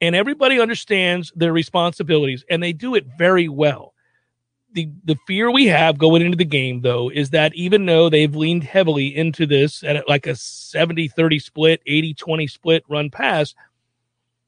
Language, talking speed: English, 160 wpm